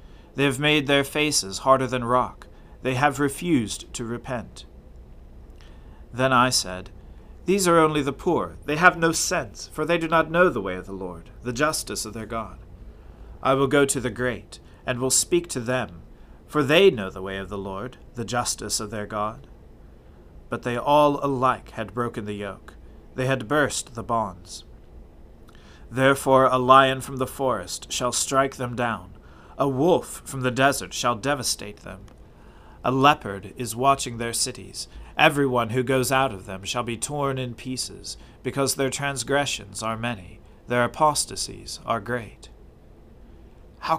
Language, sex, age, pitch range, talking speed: English, male, 40-59, 100-140 Hz, 165 wpm